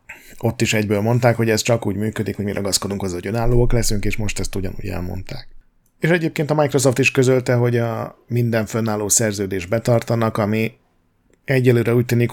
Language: Hungarian